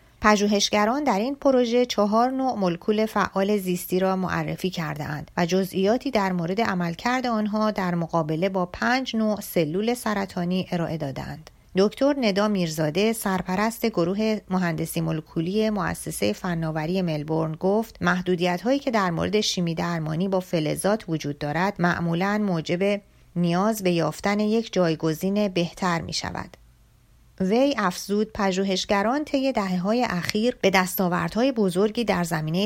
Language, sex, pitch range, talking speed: Persian, female, 170-210 Hz, 125 wpm